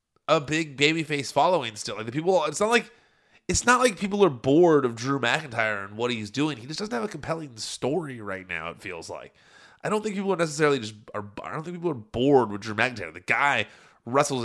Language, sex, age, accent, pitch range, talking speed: English, male, 30-49, American, 110-150 Hz, 235 wpm